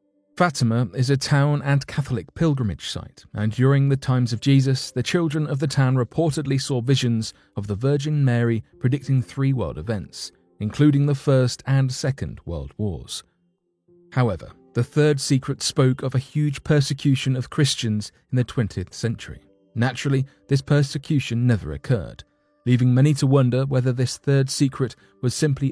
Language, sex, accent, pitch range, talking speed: English, male, British, 110-140 Hz, 155 wpm